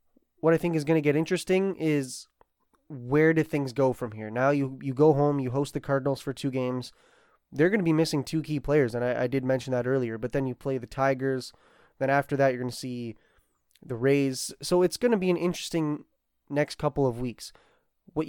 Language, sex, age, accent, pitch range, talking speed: English, male, 20-39, American, 130-150 Hz, 225 wpm